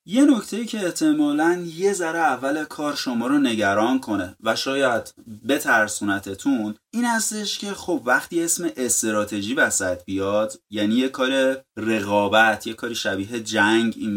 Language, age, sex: Persian, 30-49, male